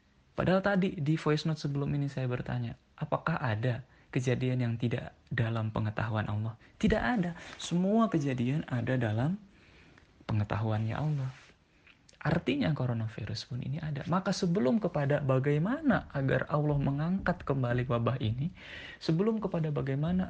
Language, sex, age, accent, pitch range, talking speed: Indonesian, male, 20-39, native, 125-190 Hz, 125 wpm